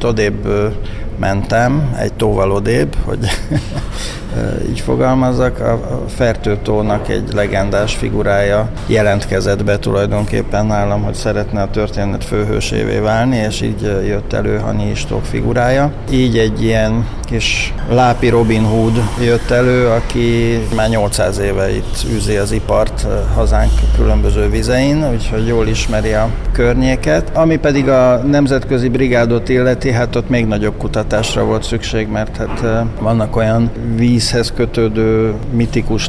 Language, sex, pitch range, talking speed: Hungarian, male, 100-120 Hz, 125 wpm